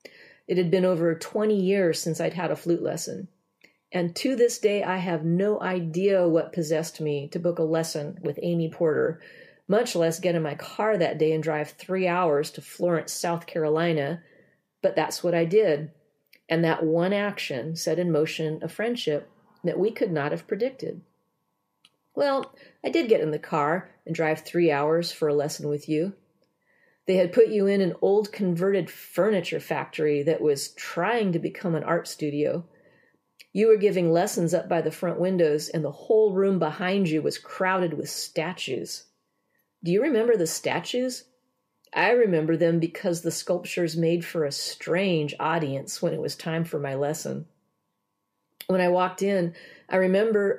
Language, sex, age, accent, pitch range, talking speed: English, female, 40-59, American, 160-195 Hz, 175 wpm